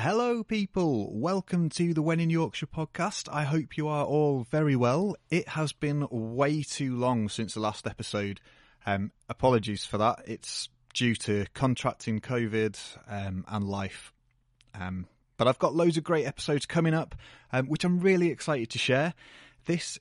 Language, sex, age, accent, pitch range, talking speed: English, male, 30-49, British, 110-145 Hz, 170 wpm